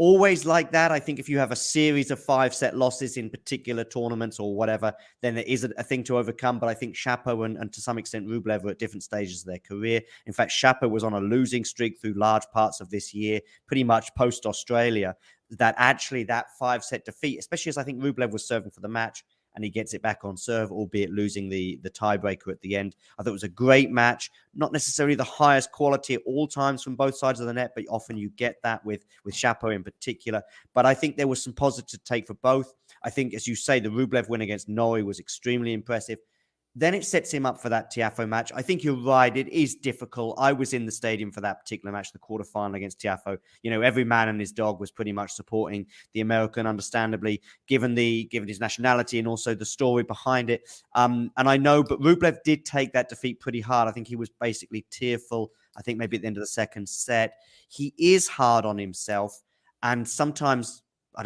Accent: British